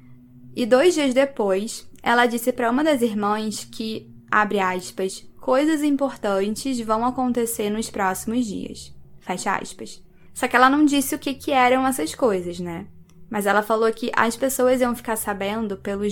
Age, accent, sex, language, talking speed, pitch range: 10-29, Brazilian, female, Portuguese, 165 wpm, 190-255 Hz